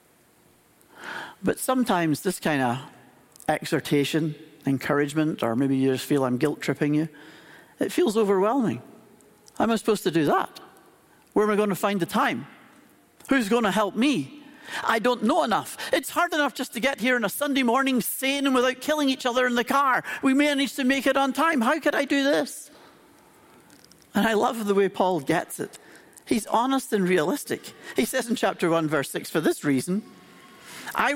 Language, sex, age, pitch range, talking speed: English, male, 60-79, 170-260 Hz, 190 wpm